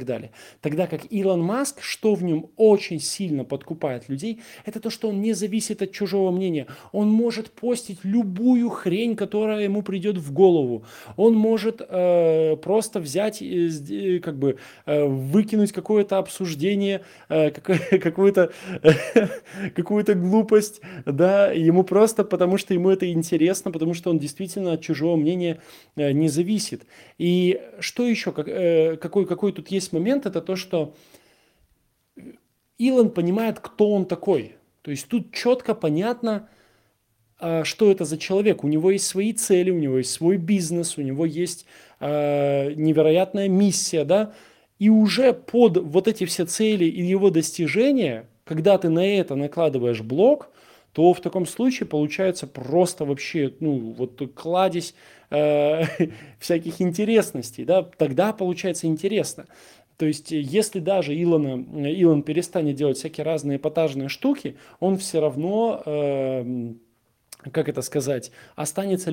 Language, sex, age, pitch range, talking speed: Russian, male, 20-39, 150-200 Hz, 135 wpm